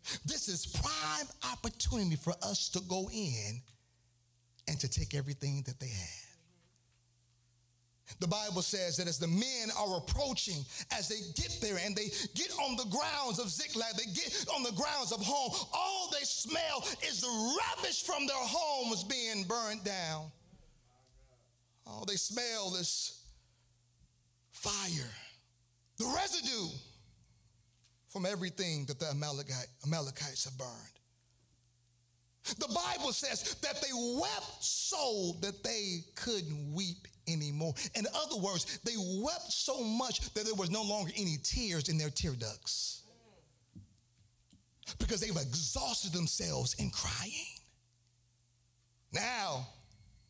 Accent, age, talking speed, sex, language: American, 40-59, 130 wpm, male, English